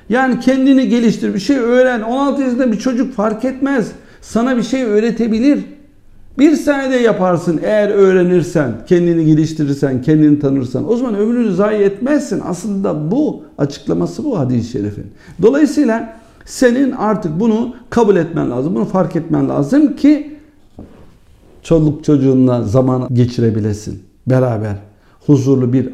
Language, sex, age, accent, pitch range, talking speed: Turkish, male, 50-69, native, 130-205 Hz, 130 wpm